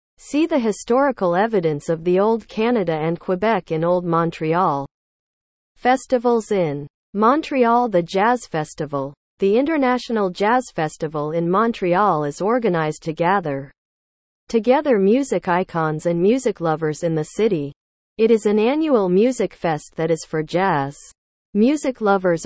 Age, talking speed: 40-59, 135 wpm